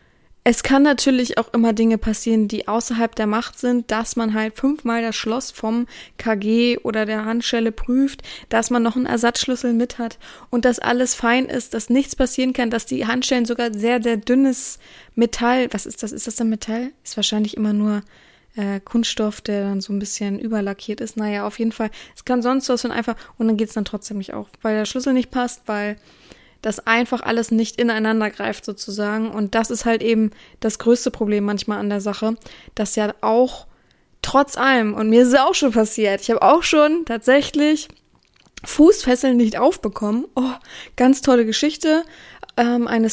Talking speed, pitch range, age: 190 wpm, 220-255 Hz, 20-39